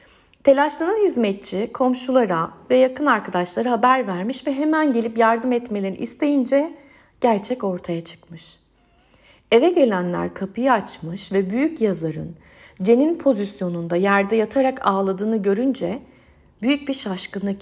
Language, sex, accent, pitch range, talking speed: Turkish, female, native, 185-245 Hz, 110 wpm